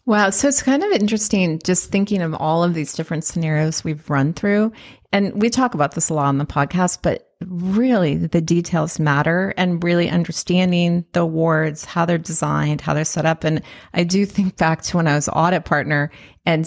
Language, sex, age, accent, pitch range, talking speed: English, female, 30-49, American, 160-195 Hz, 200 wpm